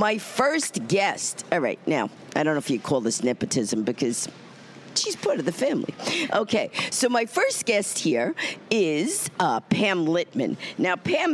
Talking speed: 170 wpm